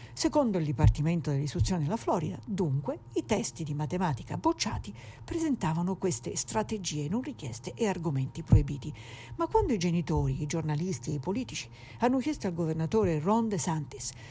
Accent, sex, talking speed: native, female, 145 wpm